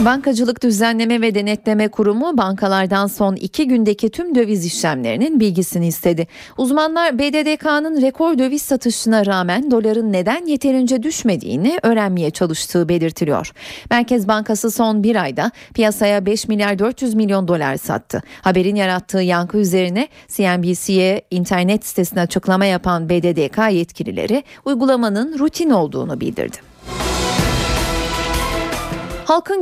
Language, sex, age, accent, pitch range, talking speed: Turkish, female, 40-59, native, 190-255 Hz, 110 wpm